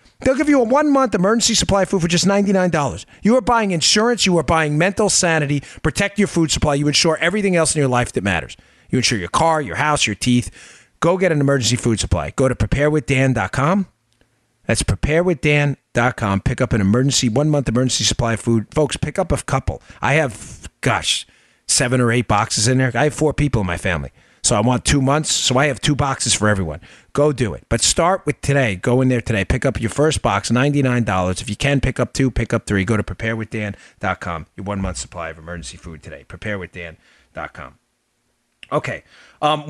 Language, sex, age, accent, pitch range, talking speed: English, male, 40-59, American, 100-150 Hz, 205 wpm